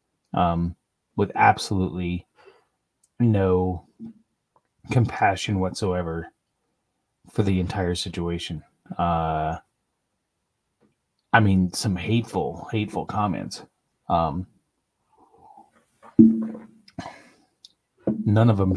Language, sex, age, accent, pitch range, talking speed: English, male, 30-49, American, 90-110 Hz, 65 wpm